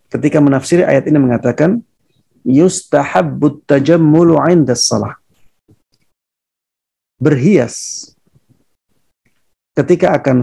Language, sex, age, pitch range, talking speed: Indonesian, male, 50-69, 130-170 Hz, 75 wpm